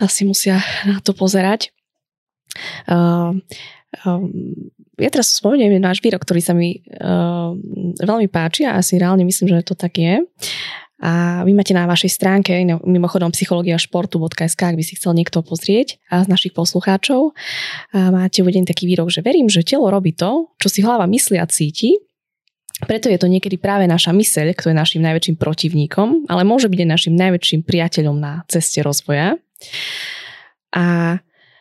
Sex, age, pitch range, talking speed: female, 20-39, 165-195 Hz, 160 wpm